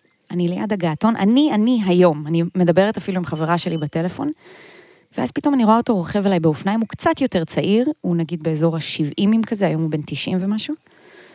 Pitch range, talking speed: 165-200 Hz, 185 wpm